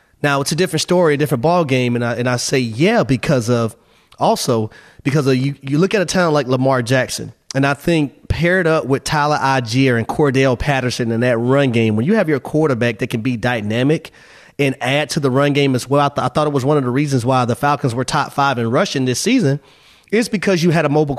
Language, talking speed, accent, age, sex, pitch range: English, 250 wpm, American, 30-49, male, 125-150 Hz